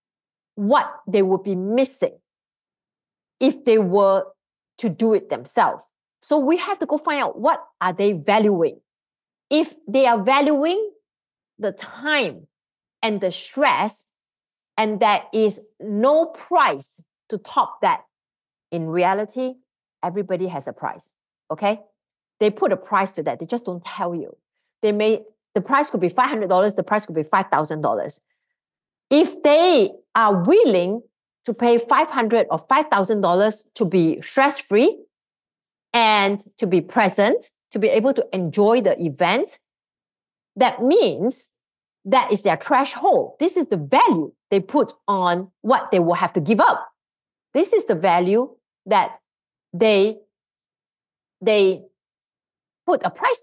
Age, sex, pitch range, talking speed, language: 40-59, female, 195-275 Hz, 140 wpm, English